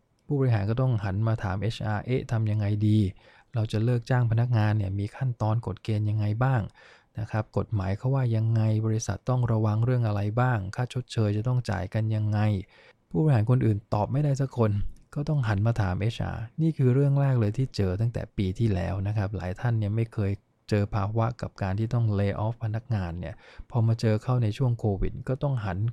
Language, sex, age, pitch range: English, male, 20-39, 105-125 Hz